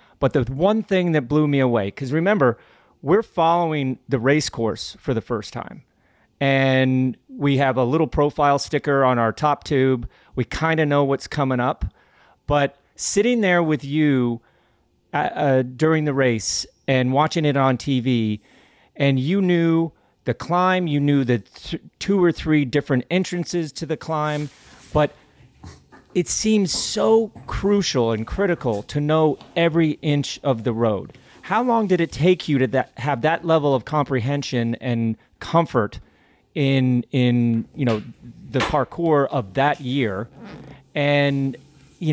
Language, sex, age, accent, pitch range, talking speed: English, male, 40-59, American, 130-165 Hz, 150 wpm